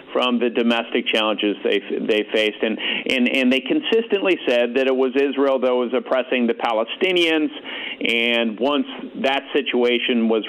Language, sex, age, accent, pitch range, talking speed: English, male, 40-59, American, 115-180 Hz, 155 wpm